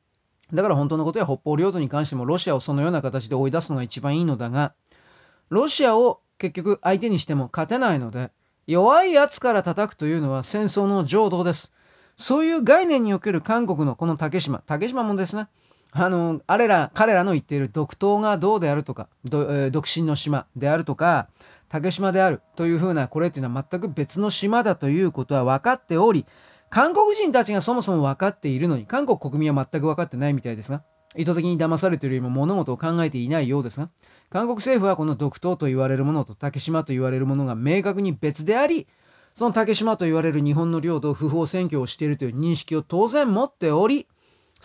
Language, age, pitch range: Japanese, 30-49, 145-190 Hz